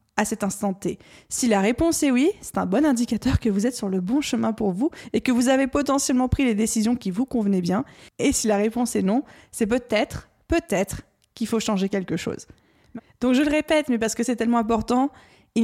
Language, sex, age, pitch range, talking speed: French, female, 20-39, 205-245 Hz, 225 wpm